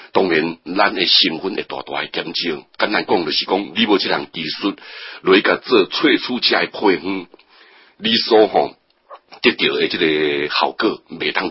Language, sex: Chinese, male